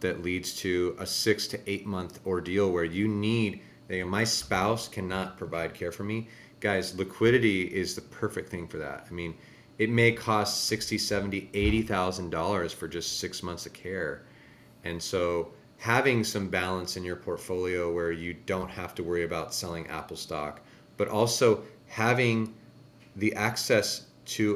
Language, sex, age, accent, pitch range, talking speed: English, male, 30-49, American, 95-115 Hz, 165 wpm